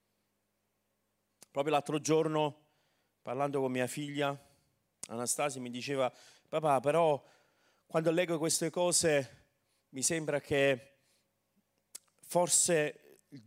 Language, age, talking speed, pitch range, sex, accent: Italian, 40-59, 95 wpm, 150-225 Hz, male, native